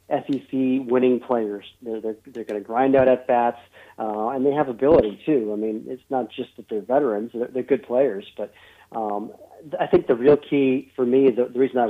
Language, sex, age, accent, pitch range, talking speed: English, male, 40-59, American, 120-140 Hz, 220 wpm